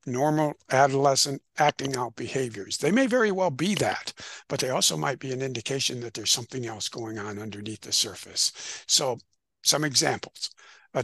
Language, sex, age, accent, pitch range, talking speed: English, male, 60-79, American, 115-145 Hz, 170 wpm